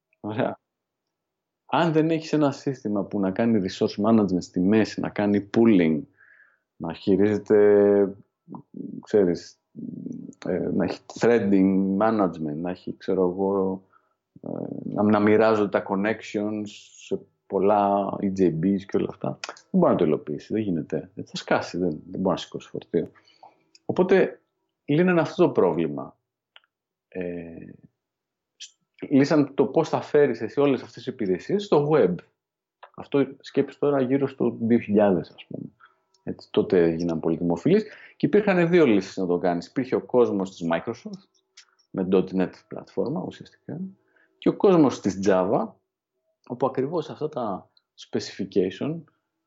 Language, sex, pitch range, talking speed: Greek, male, 95-140 Hz, 130 wpm